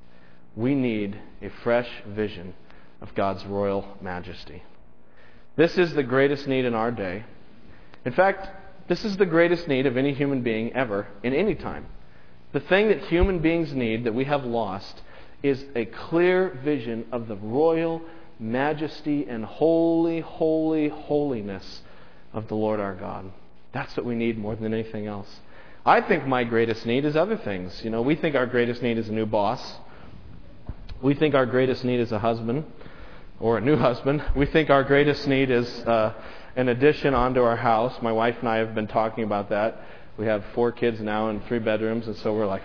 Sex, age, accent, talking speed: male, 40-59, American, 185 wpm